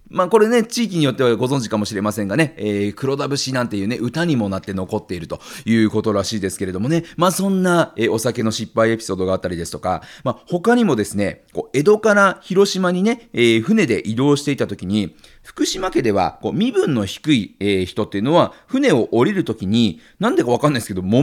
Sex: male